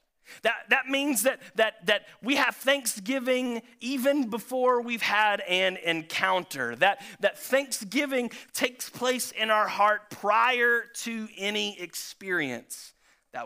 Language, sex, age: English, male, 30-49